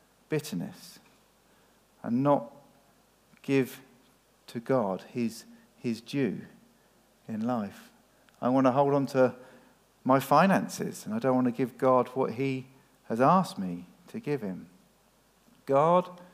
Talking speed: 130 wpm